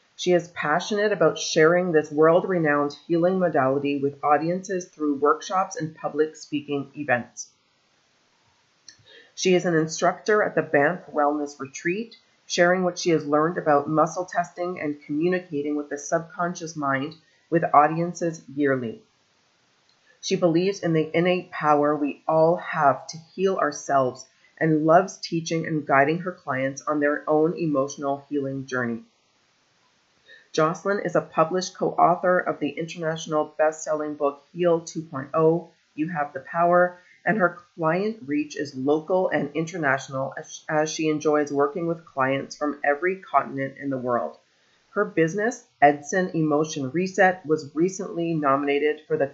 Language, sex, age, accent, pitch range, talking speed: English, female, 30-49, American, 145-175 Hz, 140 wpm